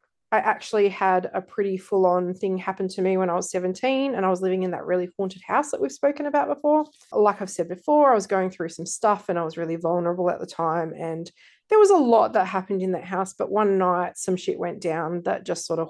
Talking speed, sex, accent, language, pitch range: 255 wpm, female, Australian, English, 180-205 Hz